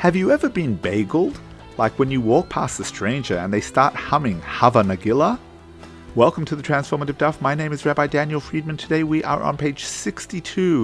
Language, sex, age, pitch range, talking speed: English, male, 40-59, 120-185 Hz, 195 wpm